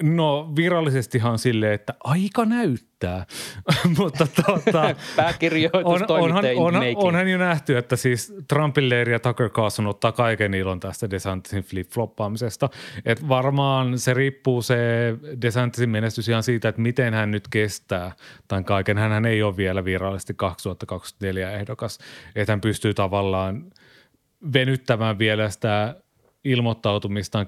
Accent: native